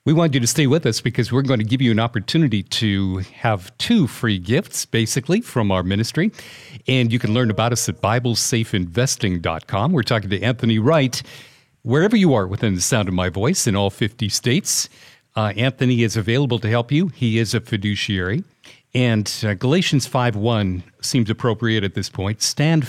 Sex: male